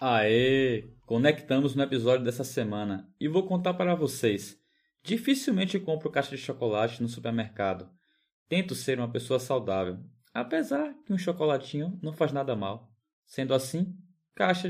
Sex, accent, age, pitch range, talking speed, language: male, Brazilian, 20-39, 115-160 Hz, 140 wpm, Portuguese